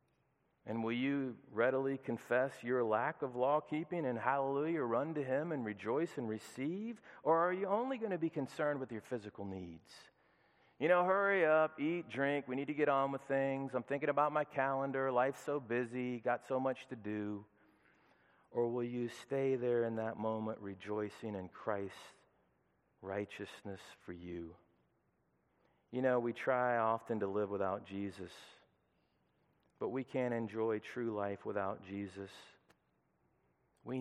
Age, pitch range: 40-59, 105-150 Hz